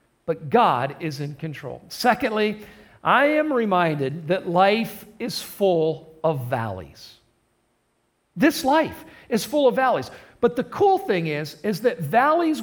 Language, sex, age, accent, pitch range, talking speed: English, male, 50-69, American, 135-220 Hz, 140 wpm